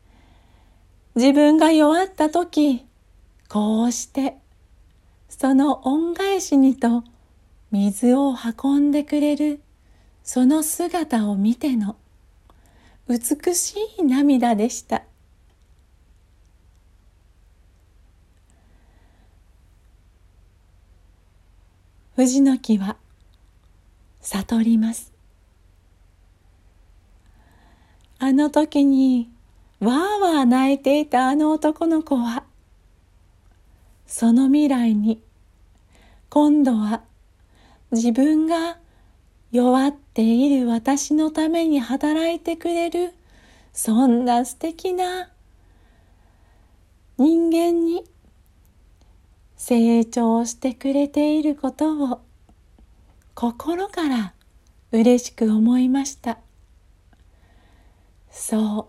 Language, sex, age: Japanese, female, 40-59